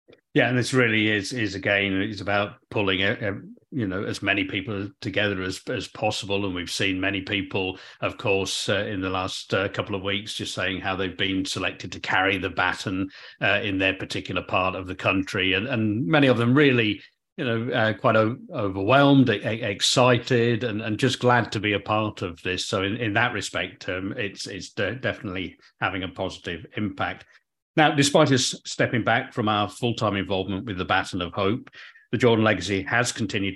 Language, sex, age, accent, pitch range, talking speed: English, male, 50-69, British, 95-125 Hz, 195 wpm